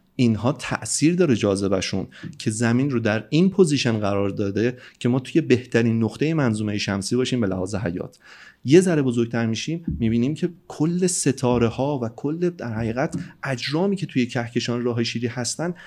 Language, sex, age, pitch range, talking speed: Persian, male, 30-49, 105-150 Hz, 165 wpm